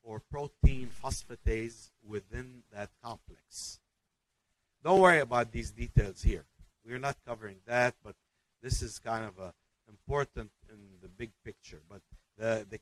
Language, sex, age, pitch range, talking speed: English, male, 50-69, 105-135 Hz, 145 wpm